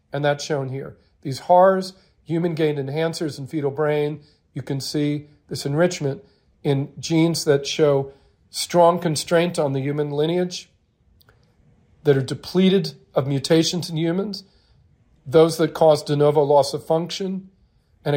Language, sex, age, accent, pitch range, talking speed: English, male, 40-59, American, 145-180 Hz, 140 wpm